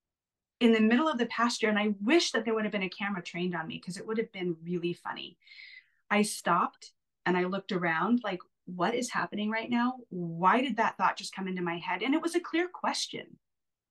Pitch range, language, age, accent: 170-215 Hz, English, 30-49, American